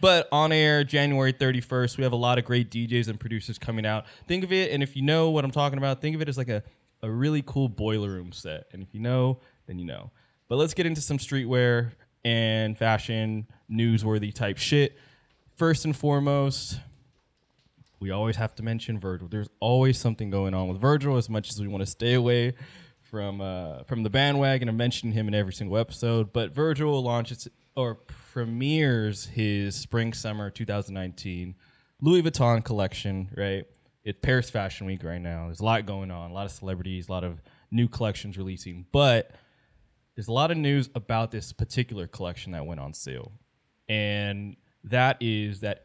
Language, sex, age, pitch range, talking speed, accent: English, male, 20-39, 100-130 Hz, 190 wpm, American